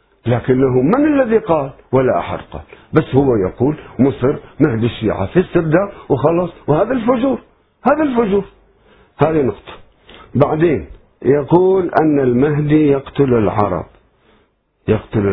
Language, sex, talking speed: Arabic, male, 110 wpm